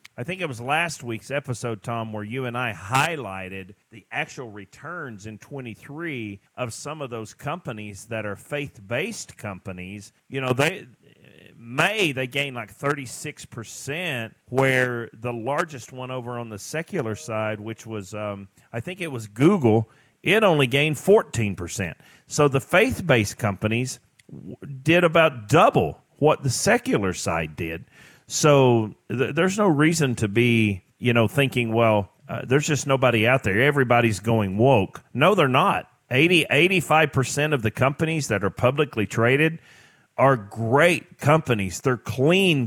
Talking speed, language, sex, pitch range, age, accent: 150 wpm, English, male, 115-150 Hz, 40-59, American